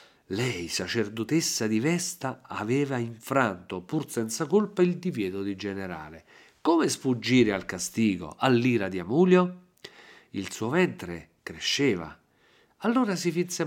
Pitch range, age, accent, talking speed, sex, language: 105-165 Hz, 50-69, native, 120 wpm, male, Italian